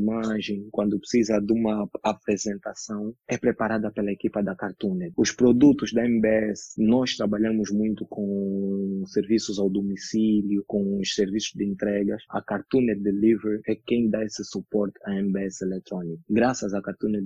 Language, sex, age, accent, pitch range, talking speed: Portuguese, male, 20-39, Brazilian, 100-115 Hz, 145 wpm